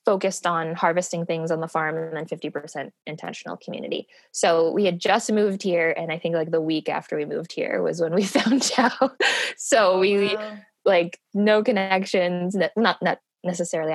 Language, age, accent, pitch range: English, 20-39, American, 165-195 Hz